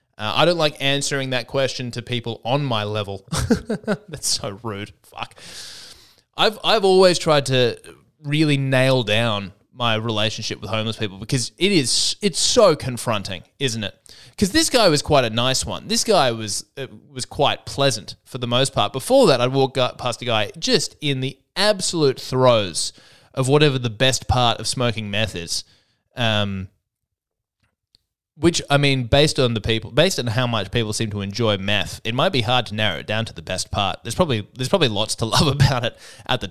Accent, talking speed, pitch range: Australian, 190 wpm, 110-145 Hz